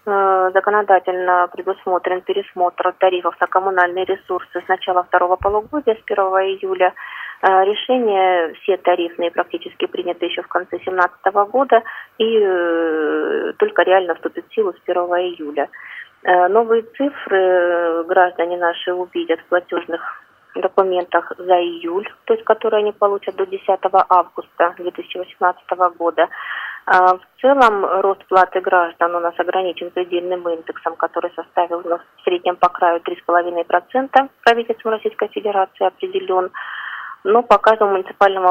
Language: Russian